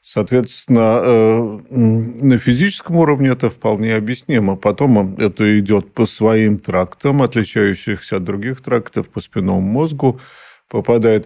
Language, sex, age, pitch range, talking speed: Russian, male, 50-69, 105-125 Hz, 110 wpm